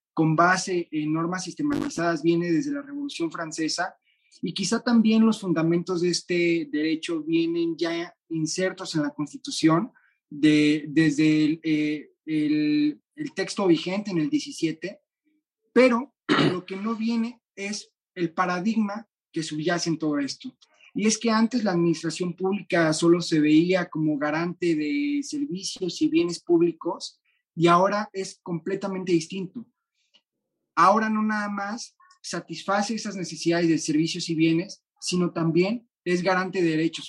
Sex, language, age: male, Spanish, 30-49